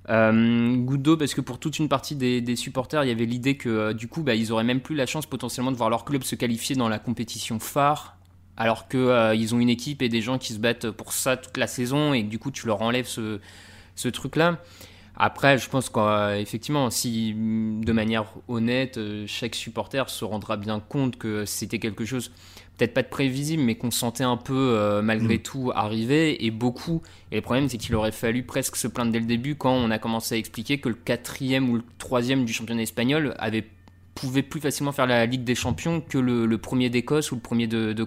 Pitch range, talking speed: 110-130 Hz, 230 wpm